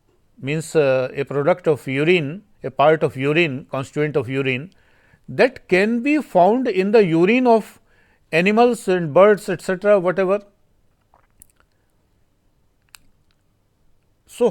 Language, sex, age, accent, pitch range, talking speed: Hindi, male, 50-69, native, 130-185 Hz, 110 wpm